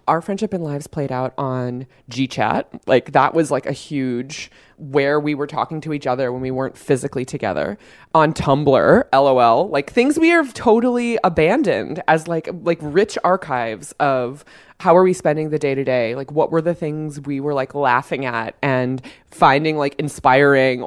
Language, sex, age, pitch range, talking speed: English, female, 20-39, 130-160 Hz, 180 wpm